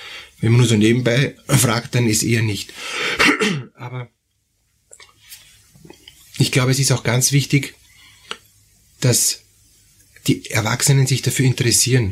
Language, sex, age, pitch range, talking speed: German, male, 30-49, 110-125 Hz, 120 wpm